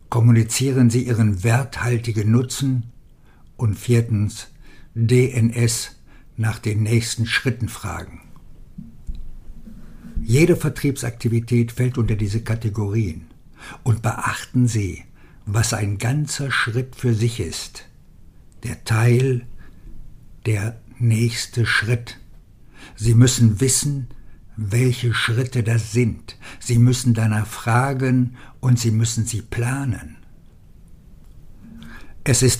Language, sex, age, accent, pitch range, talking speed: German, male, 60-79, German, 105-125 Hz, 95 wpm